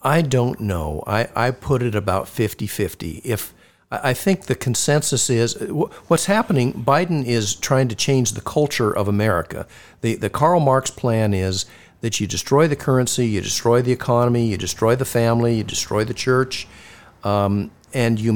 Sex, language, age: male, English, 50-69